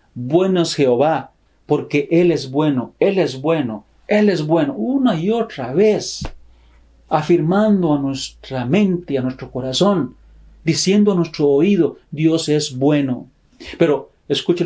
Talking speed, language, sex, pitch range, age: 135 wpm, Spanish, male, 130-170 Hz, 40-59